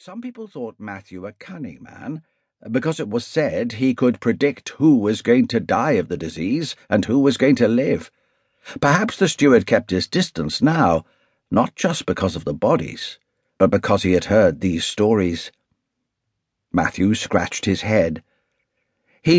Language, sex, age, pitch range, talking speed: English, male, 60-79, 100-165 Hz, 165 wpm